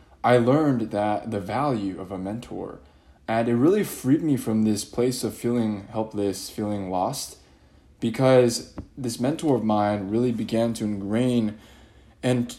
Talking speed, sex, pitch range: 150 wpm, male, 95-120 Hz